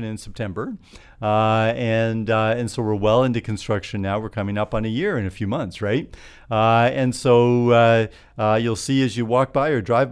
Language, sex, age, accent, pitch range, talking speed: English, male, 50-69, American, 100-120 Hz, 215 wpm